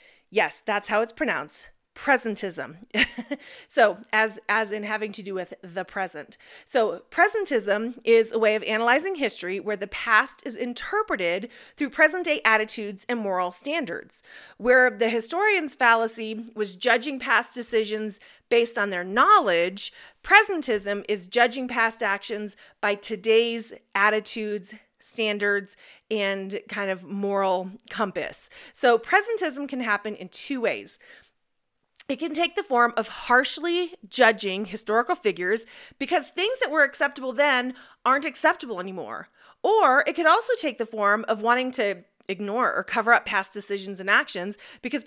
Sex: female